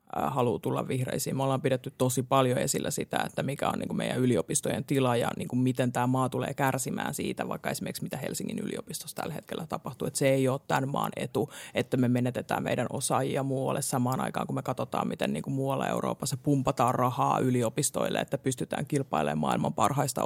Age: 30-49